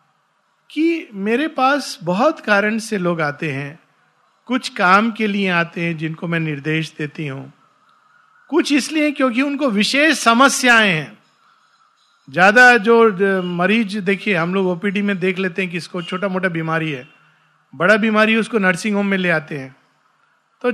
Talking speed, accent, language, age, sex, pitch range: 155 wpm, native, Hindi, 50-69, male, 185-260 Hz